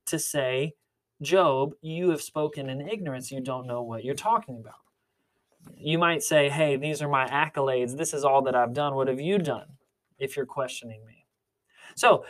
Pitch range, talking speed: 130-165 Hz, 185 wpm